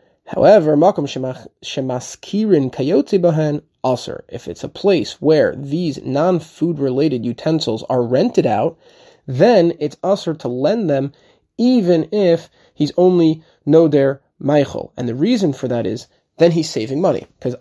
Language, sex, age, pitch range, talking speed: English, male, 30-49, 130-165 Hz, 125 wpm